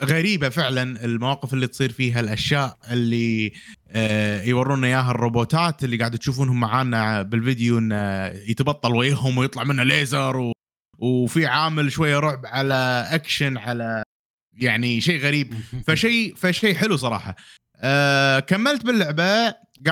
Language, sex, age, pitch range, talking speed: Arabic, male, 20-39, 115-155 Hz, 120 wpm